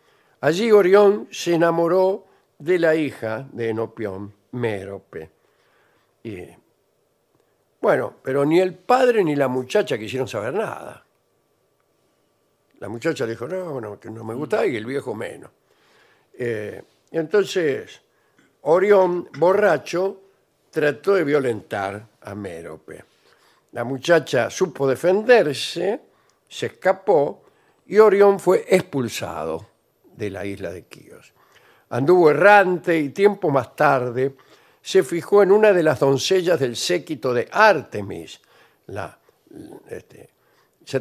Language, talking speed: Spanish, 115 wpm